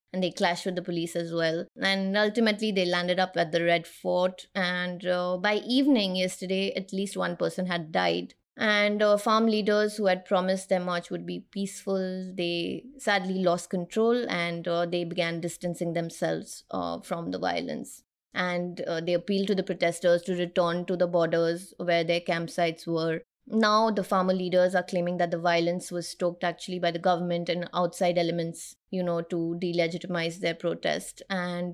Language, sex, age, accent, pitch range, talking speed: English, female, 20-39, Indian, 170-190 Hz, 180 wpm